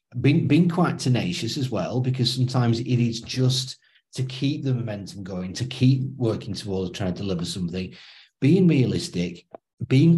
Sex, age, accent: male, 40-59, British